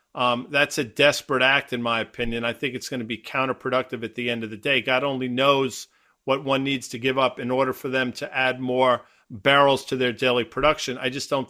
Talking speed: 235 wpm